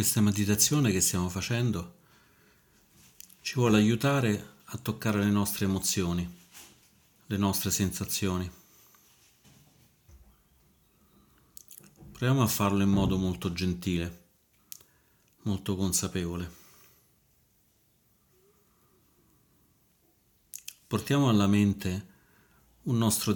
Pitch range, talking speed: 90-105 Hz, 75 wpm